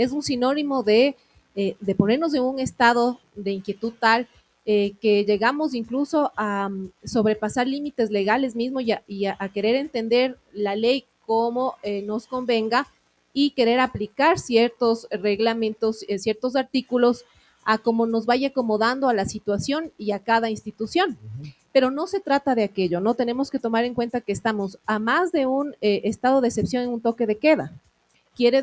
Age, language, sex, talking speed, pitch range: 30-49, Spanish, female, 170 wpm, 210-255 Hz